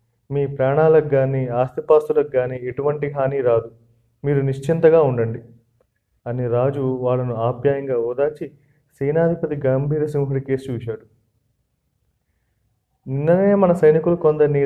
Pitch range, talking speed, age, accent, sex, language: 120-145 Hz, 100 wpm, 30-49, native, male, Telugu